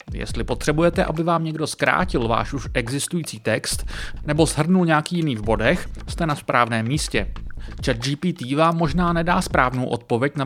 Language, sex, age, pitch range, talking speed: Czech, male, 30-49, 130-170 Hz, 160 wpm